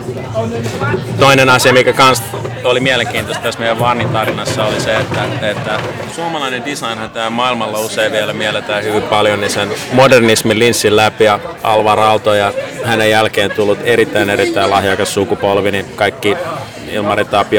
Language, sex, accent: Finnish, male, native